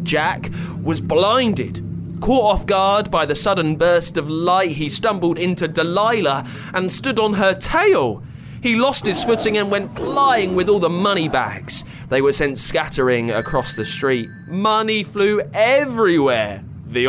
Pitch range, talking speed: 120-180 Hz, 155 wpm